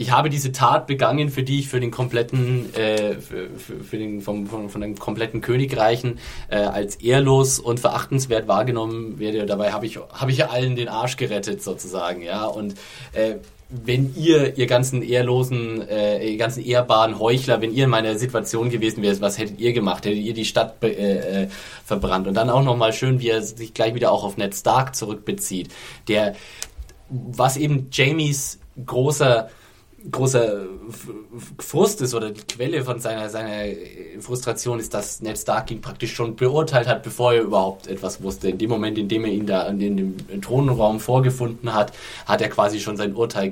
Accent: German